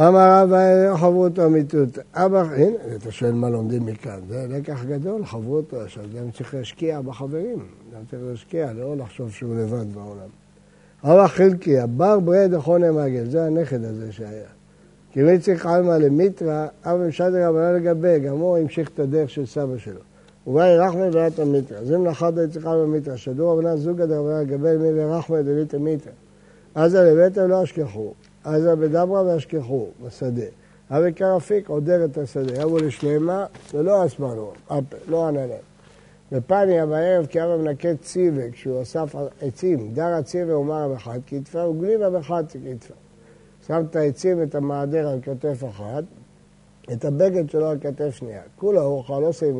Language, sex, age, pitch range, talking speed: Hebrew, male, 60-79, 130-170 Hz, 150 wpm